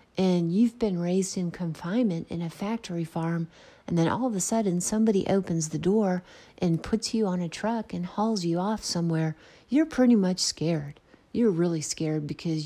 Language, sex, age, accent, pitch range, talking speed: English, female, 40-59, American, 160-200 Hz, 185 wpm